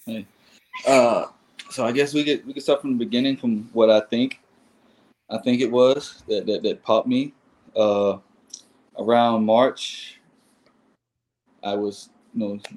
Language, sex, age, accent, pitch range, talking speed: English, male, 20-39, American, 105-120 Hz, 155 wpm